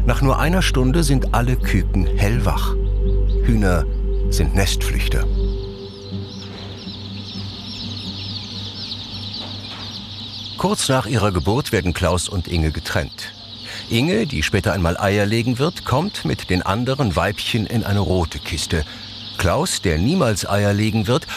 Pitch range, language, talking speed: 100-115 Hz, German, 120 wpm